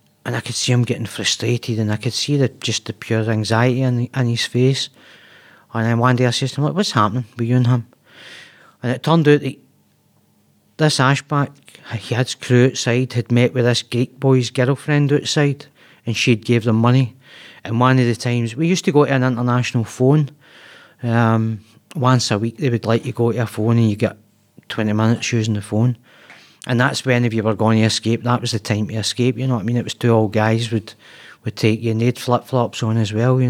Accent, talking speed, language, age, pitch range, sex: British, 225 wpm, English, 40-59, 110-125 Hz, male